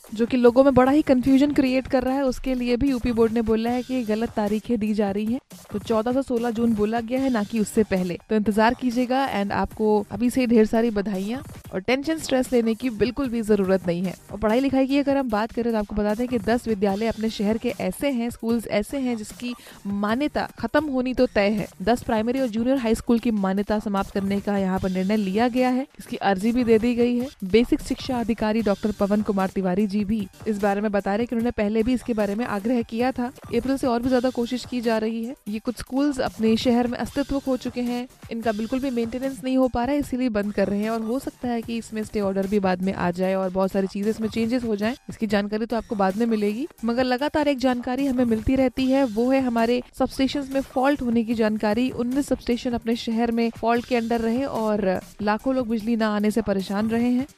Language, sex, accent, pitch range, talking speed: Hindi, female, native, 215-255 Hz, 245 wpm